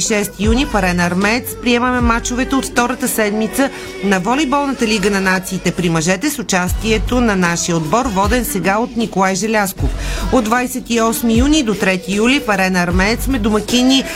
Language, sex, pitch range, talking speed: Bulgarian, female, 195-245 Hz, 155 wpm